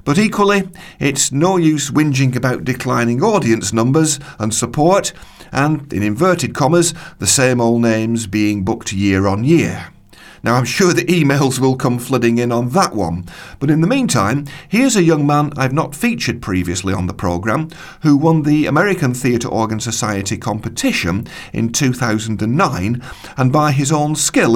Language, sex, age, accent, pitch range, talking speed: English, male, 40-59, British, 105-145 Hz, 165 wpm